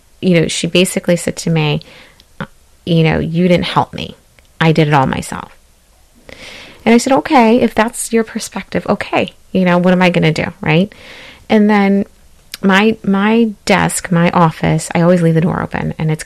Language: English